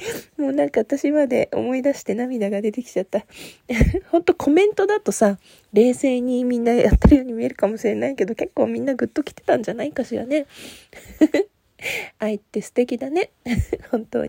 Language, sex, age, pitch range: Japanese, female, 20-39, 200-280 Hz